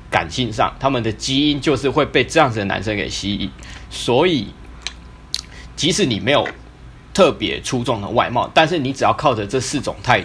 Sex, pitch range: male, 95-130 Hz